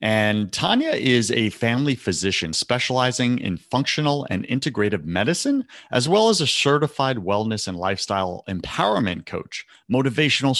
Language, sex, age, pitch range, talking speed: English, male, 40-59, 100-130 Hz, 130 wpm